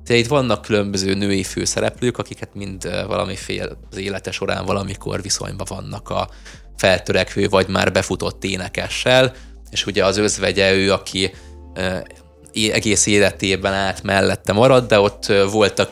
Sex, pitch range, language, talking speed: male, 95-110 Hz, Hungarian, 130 wpm